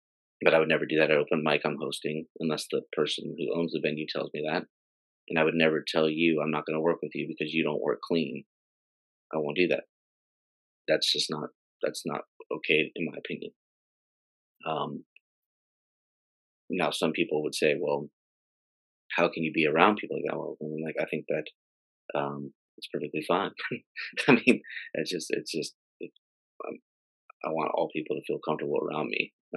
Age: 30-49